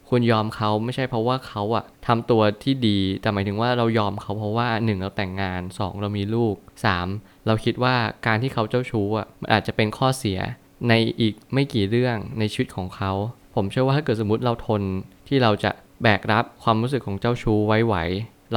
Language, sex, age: Thai, male, 20-39